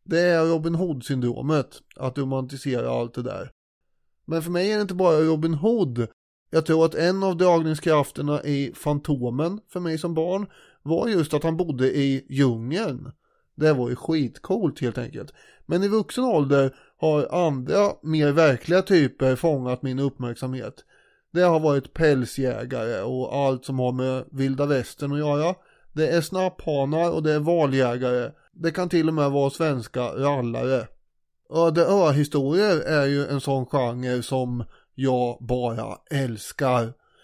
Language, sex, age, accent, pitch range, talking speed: Swedish, male, 30-49, native, 135-170 Hz, 150 wpm